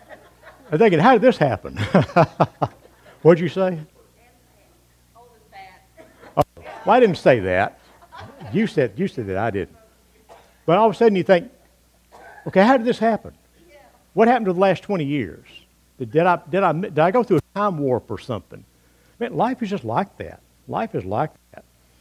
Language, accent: English, American